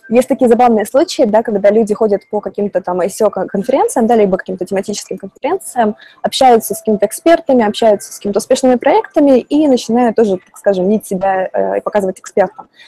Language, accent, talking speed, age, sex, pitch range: Russian, native, 170 wpm, 20-39, female, 190-240 Hz